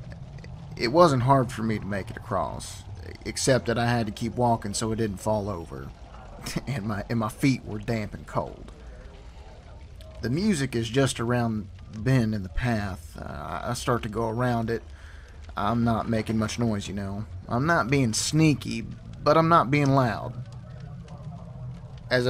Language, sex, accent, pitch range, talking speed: English, male, American, 90-125 Hz, 170 wpm